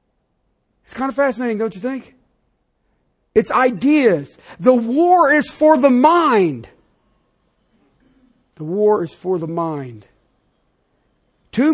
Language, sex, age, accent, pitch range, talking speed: English, male, 50-69, American, 210-300 Hz, 110 wpm